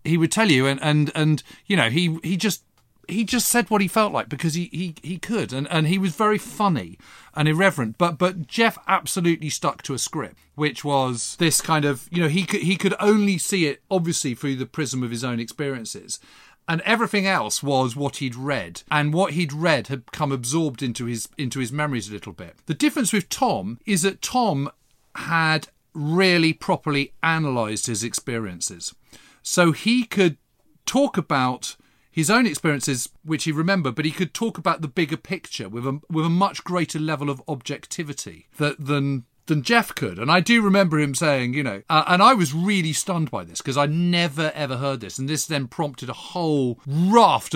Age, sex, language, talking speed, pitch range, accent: 40-59, male, English, 200 wpm, 135-180 Hz, British